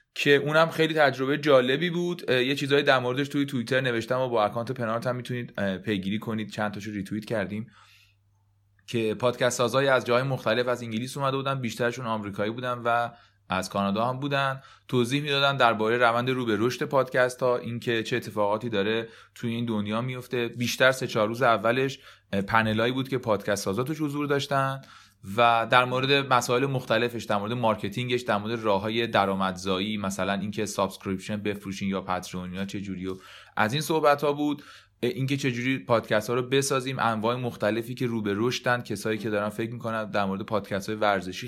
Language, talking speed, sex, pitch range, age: Persian, 170 wpm, male, 105-125 Hz, 30-49